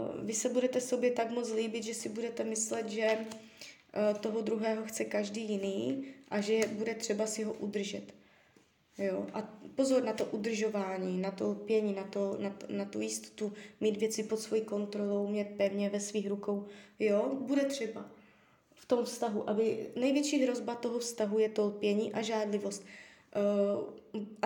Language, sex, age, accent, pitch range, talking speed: Czech, female, 20-39, native, 210-250 Hz, 160 wpm